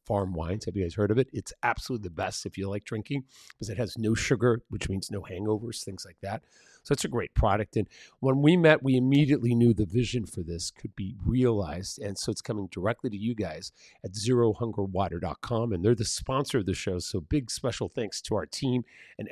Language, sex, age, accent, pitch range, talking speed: English, male, 40-59, American, 105-140 Hz, 225 wpm